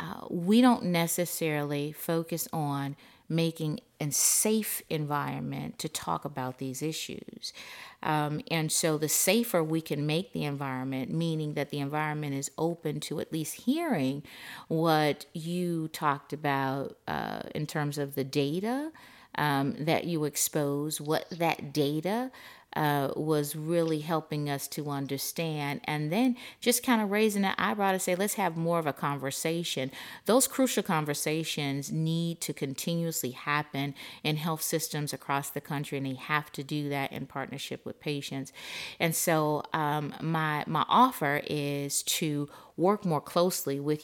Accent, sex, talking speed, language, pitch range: American, female, 150 wpm, English, 145-165 Hz